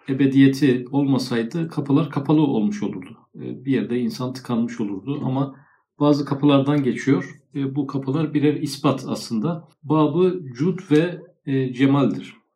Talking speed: 115 wpm